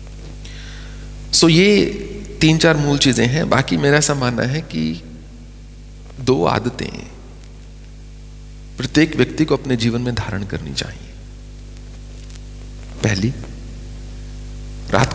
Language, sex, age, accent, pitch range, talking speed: English, male, 40-59, Indian, 115-135 Hz, 100 wpm